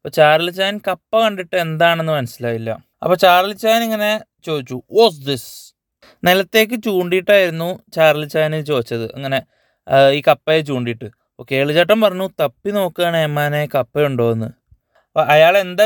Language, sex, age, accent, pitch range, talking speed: English, male, 20-39, Indian, 135-180 Hz, 80 wpm